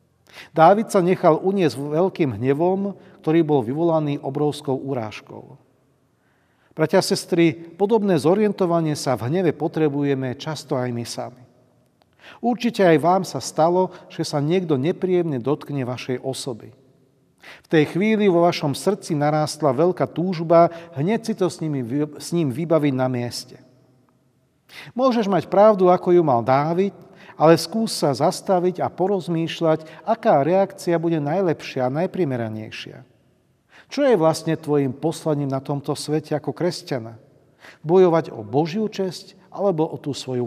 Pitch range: 135-180 Hz